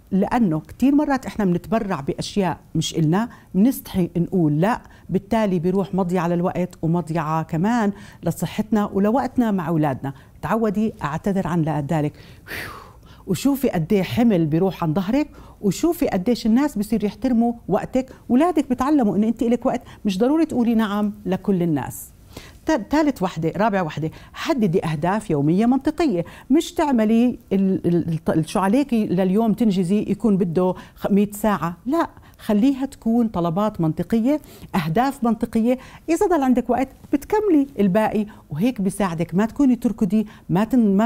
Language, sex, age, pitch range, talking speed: Arabic, female, 50-69, 175-235 Hz, 130 wpm